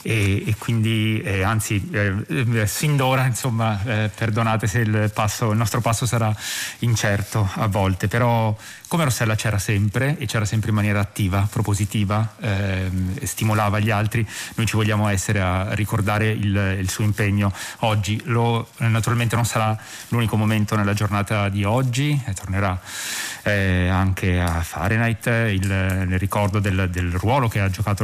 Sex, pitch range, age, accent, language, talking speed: male, 100-115 Hz, 30-49, native, Italian, 150 wpm